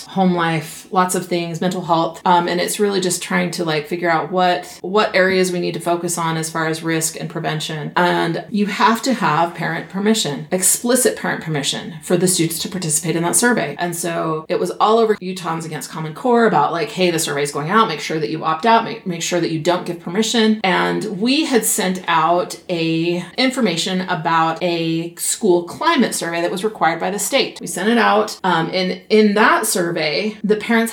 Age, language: 30-49, English